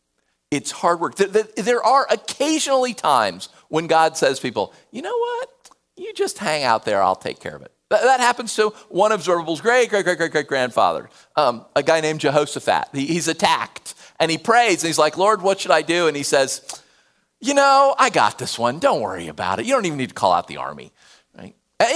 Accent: American